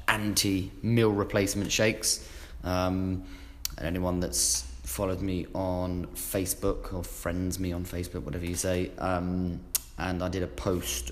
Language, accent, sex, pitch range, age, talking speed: English, British, male, 85-100 Hz, 20-39, 140 wpm